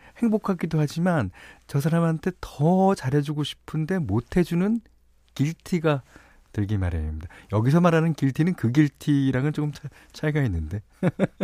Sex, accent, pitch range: male, native, 100-165 Hz